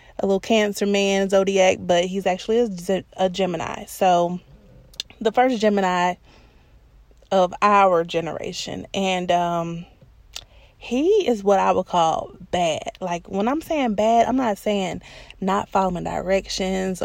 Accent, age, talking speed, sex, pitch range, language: American, 30-49, 130 wpm, female, 185-225 Hz, English